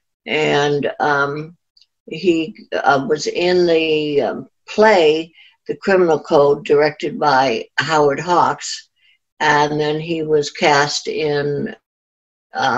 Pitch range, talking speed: 140-175 Hz, 110 wpm